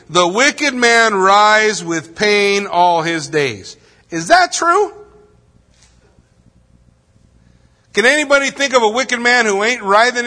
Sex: male